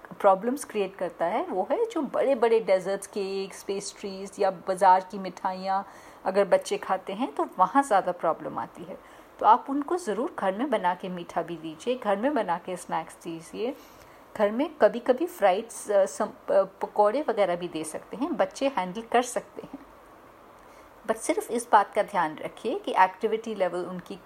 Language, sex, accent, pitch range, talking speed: Hindi, female, native, 190-265 Hz, 175 wpm